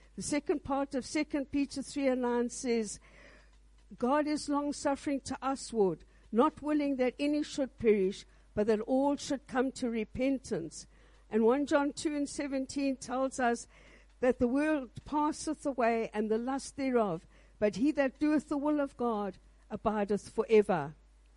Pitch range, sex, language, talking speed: 230-285 Hz, female, English, 155 wpm